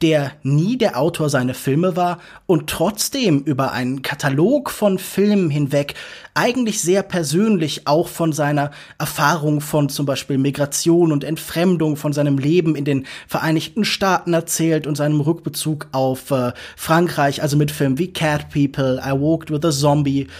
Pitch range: 145-185 Hz